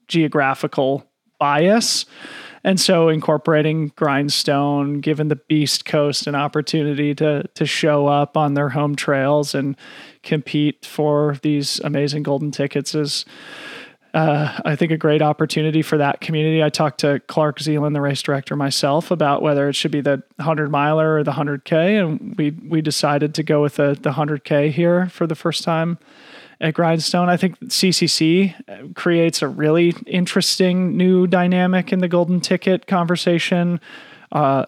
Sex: male